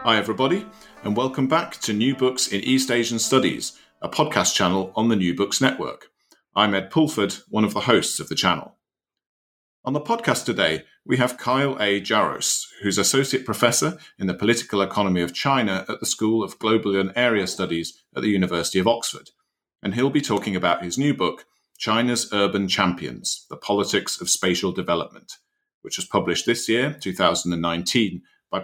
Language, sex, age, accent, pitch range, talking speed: English, male, 40-59, British, 90-115 Hz, 175 wpm